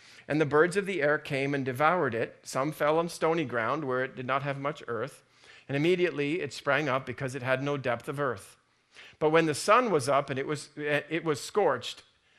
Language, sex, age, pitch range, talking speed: English, male, 40-59, 135-165 Hz, 225 wpm